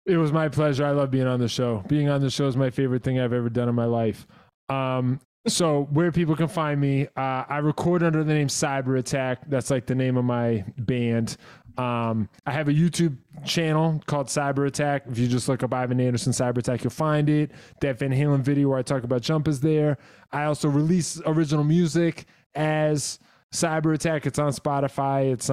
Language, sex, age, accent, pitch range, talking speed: English, male, 20-39, American, 125-150 Hz, 210 wpm